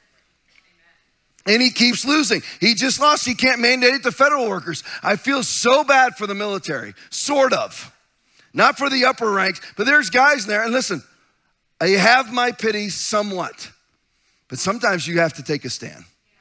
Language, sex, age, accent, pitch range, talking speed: English, male, 30-49, American, 165-225 Hz, 175 wpm